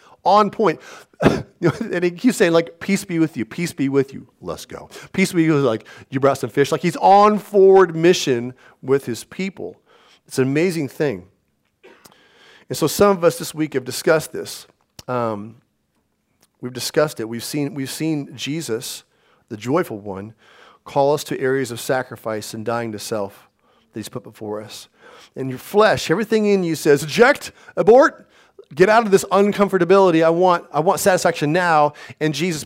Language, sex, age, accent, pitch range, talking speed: English, male, 40-59, American, 120-165 Hz, 180 wpm